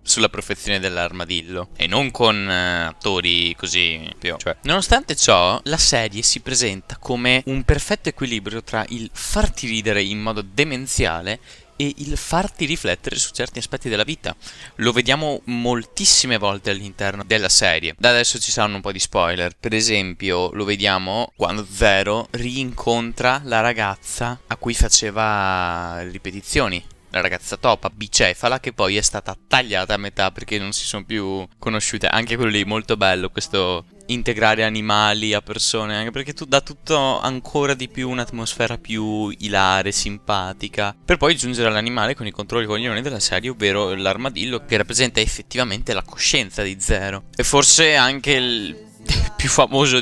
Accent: native